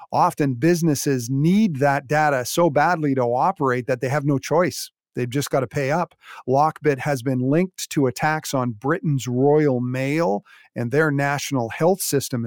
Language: English